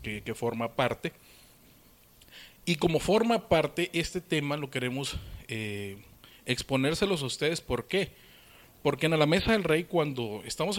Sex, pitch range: male, 115-155 Hz